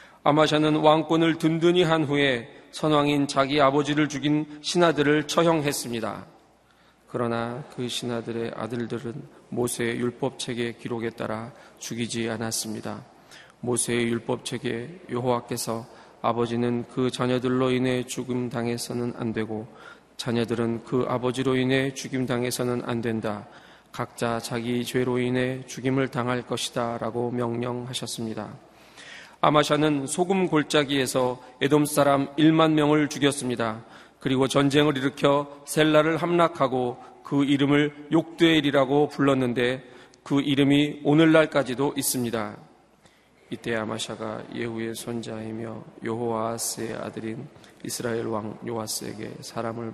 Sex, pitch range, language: male, 115-145 Hz, Korean